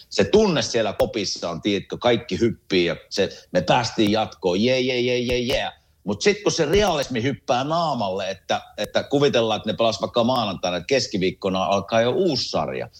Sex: male